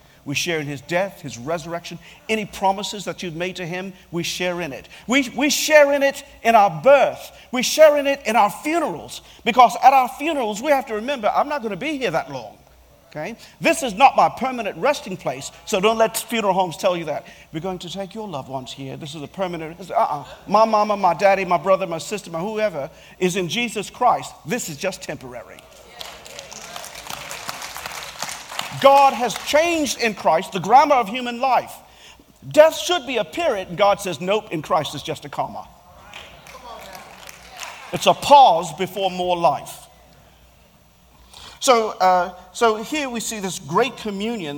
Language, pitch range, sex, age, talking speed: English, 175-240 Hz, male, 50-69, 185 wpm